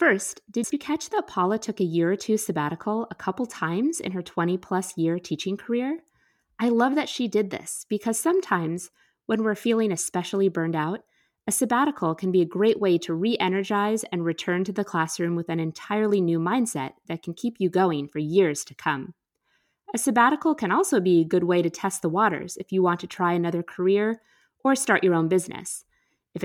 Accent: American